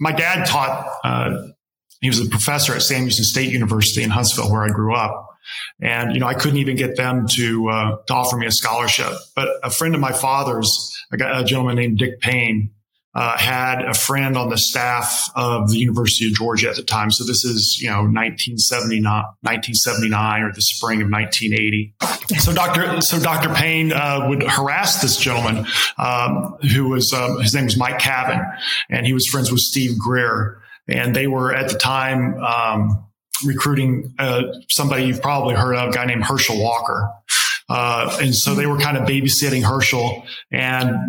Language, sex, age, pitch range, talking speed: English, male, 30-49, 115-135 Hz, 190 wpm